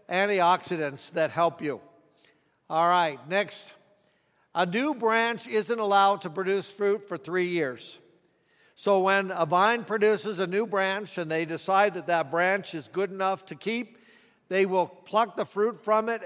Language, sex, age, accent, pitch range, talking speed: English, male, 60-79, American, 170-215 Hz, 160 wpm